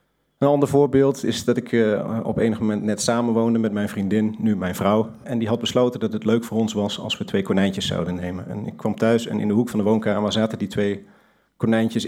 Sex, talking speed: male, 240 wpm